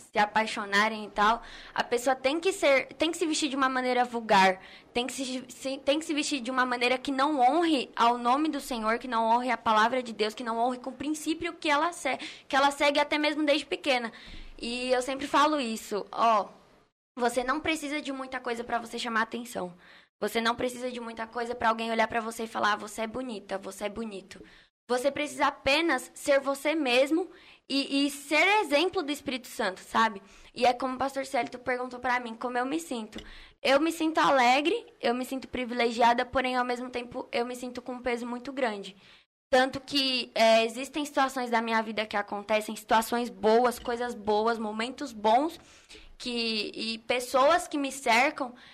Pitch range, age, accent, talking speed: 230-280 Hz, 10-29, Brazilian, 200 wpm